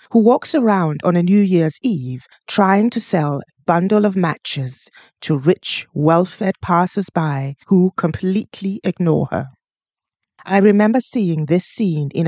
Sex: female